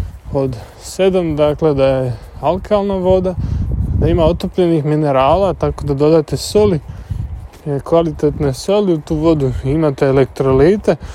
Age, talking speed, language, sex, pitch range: 20-39, 120 wpm, Croatian, male, 135-170 Hz